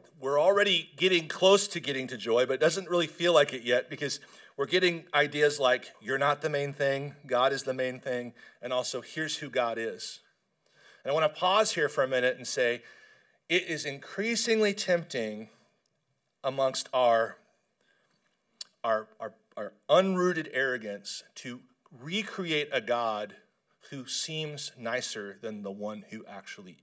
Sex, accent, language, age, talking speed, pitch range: male, American, English, 40-59, 155 wpm, 130-200 Hz